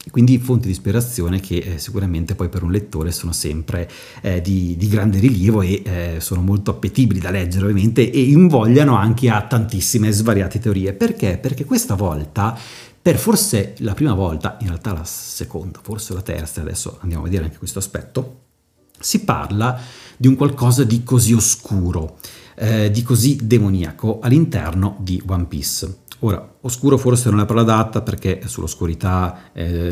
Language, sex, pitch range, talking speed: Italian, male, 95-120 Hz, 165 wpm